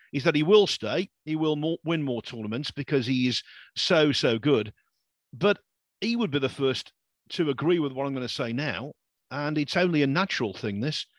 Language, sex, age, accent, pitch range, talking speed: English, male, 50-69, British, 125-180 Hz, 205 wpm